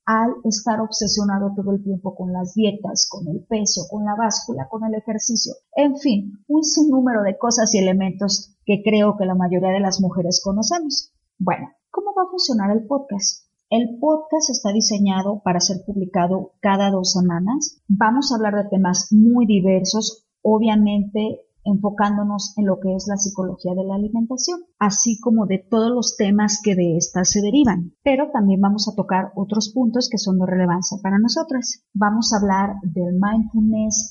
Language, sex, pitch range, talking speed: Spanish, female, 190-225 Hz, 175 wpm